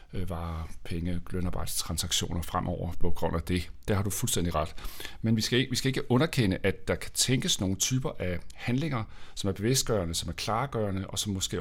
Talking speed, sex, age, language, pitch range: 190 wpm, male, 40-59, Danish, 95-130 Hz